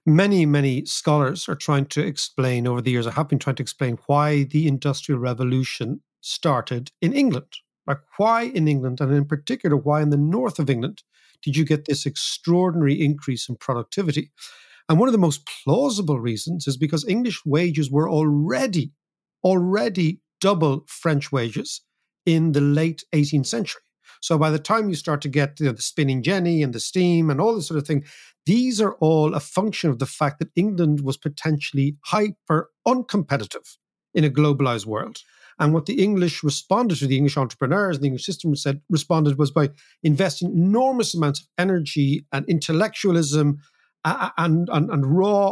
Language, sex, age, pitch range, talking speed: English, male, 50-69, 145-175 Hz, 175 wpm